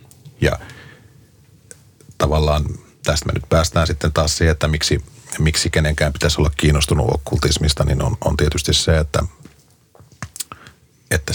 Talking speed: 125 wpm